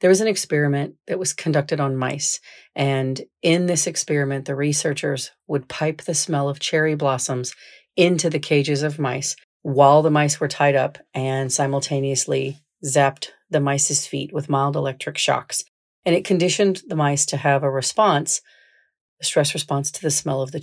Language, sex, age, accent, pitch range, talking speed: English, female, 40-59, American, 140-160 Hz, 175 wpm